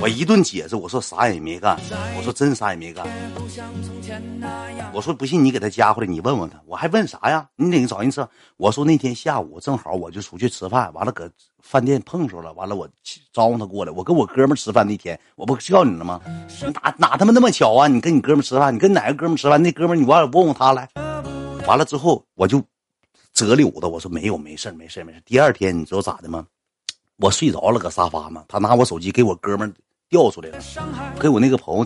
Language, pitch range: Chinese, 95-140 Hz